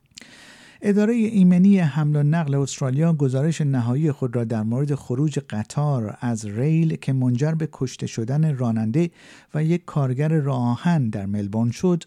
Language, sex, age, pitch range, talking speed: Persian, male, 50-69, 120-165 Hz, 145 wpm